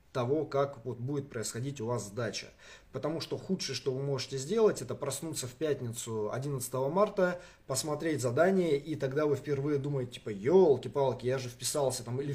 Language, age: Russian, 20-39